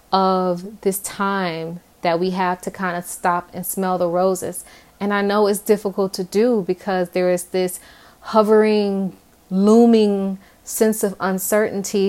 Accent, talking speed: American, 150 wpm